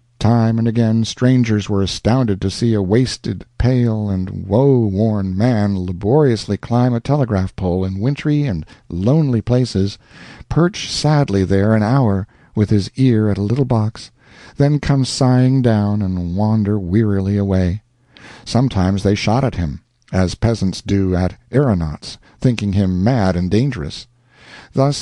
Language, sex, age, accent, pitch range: Japanese, male, 60-79, American, 100-135 Hz